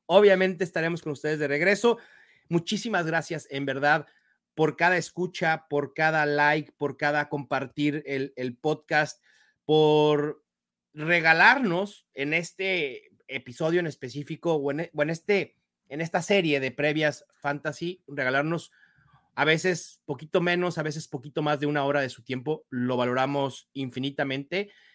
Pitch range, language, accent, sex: 140-185 Hz, English, Mexican, male